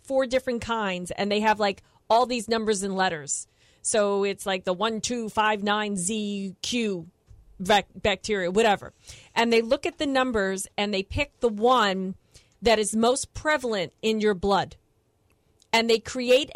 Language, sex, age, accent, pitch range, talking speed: English, female, 40-59, American, 205-250 Hz, 165 wpm